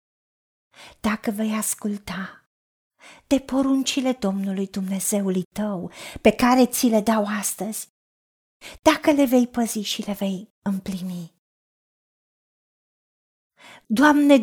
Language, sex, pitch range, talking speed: Romanian, female, 220-290 Hz, 95 wpm